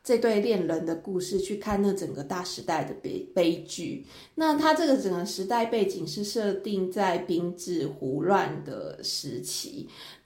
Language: Chinese